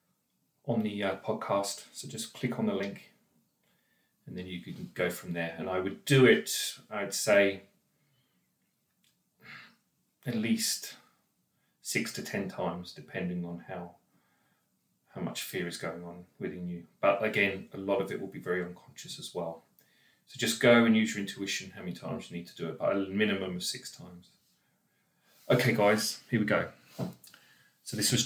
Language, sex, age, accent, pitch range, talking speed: English, male, 30-49, British, 95-125 Hz, 175 wpm